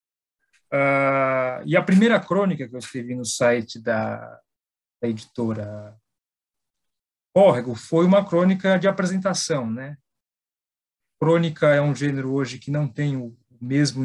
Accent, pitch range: Brazilian, 120-165 Hz